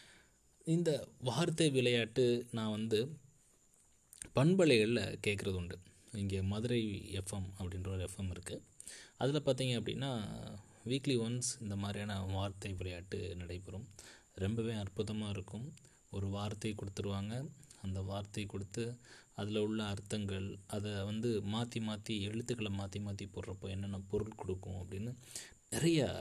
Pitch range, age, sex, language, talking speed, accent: 95-120 Hz, 20-39, male, Tamil, 115 wpm, native